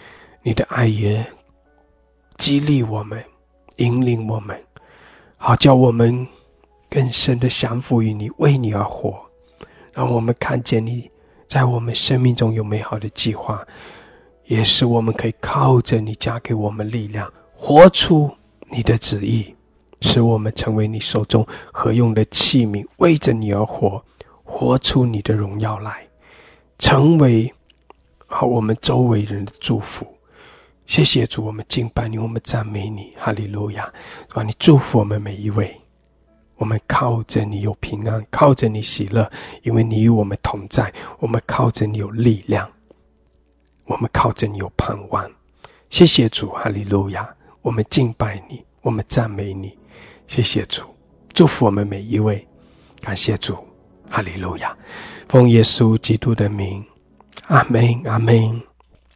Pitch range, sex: 105-120 Hz, male